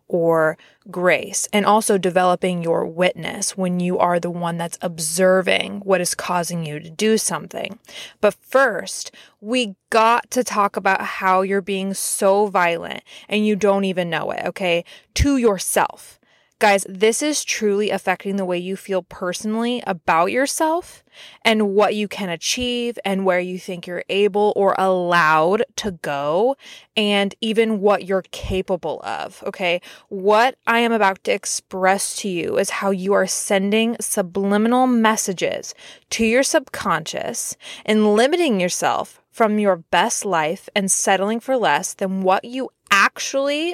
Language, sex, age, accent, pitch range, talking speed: English, female, 20-39, American, 185-220 Hz, 150 wpm